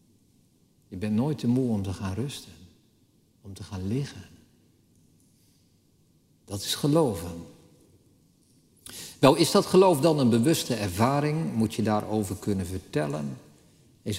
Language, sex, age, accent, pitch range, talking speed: Dutch, male, 50-69, Dutch, 100-135 Hz, 125 wpm